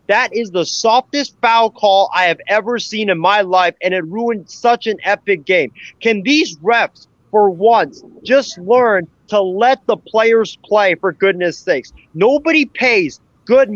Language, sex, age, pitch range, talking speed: English, male, 30-49, 185-225 Hz, 165 wpm